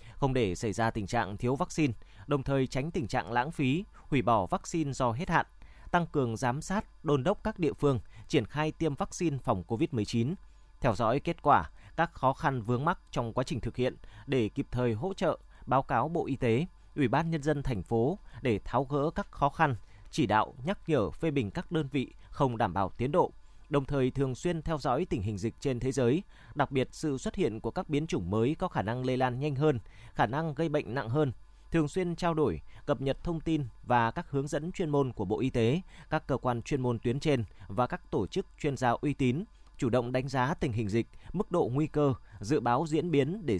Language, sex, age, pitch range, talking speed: Vietnamese, male, 20-39, 120-155 Hz, 235 wpm